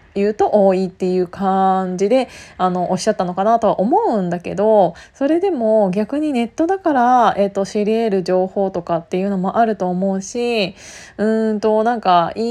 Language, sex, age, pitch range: Japanese, female, 20-39, 185-235 Hz